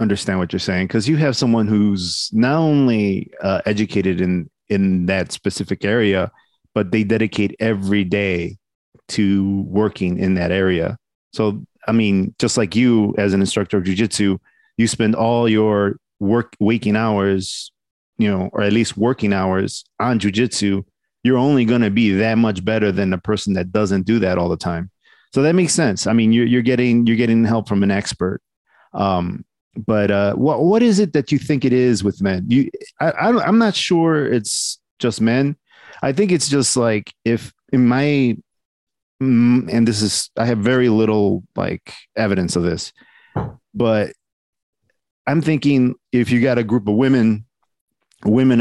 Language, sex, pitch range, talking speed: English, male, 100-120 Hz, 175 wpm